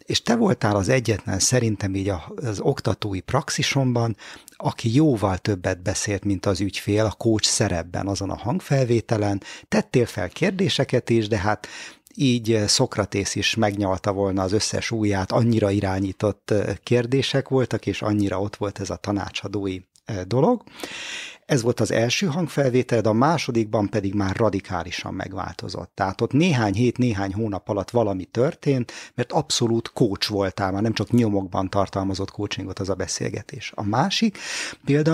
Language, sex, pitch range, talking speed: Hungarian, male, 100-125 Hz, 145 wpm